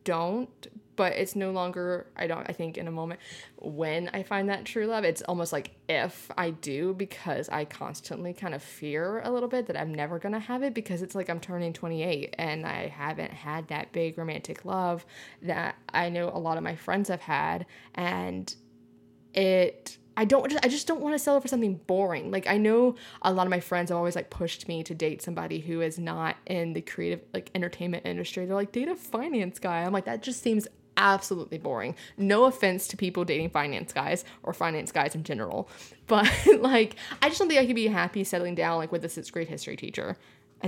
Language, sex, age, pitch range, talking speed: English, female, 20-39, 165-220 Hz, 215 wpm